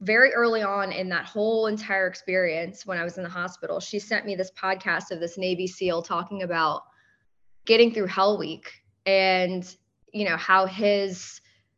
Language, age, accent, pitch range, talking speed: English, 20-39, American, 180-220 Hz, 175 wpm